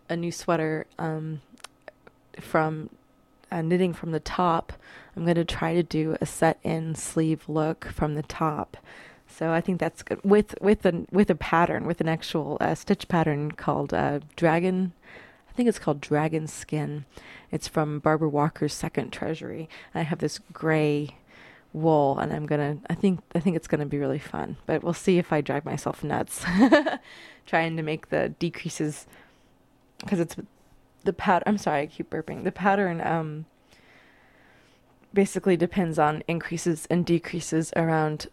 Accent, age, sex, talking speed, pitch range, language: American, 20-39, female, 165 wpm, 155-175 Hz, English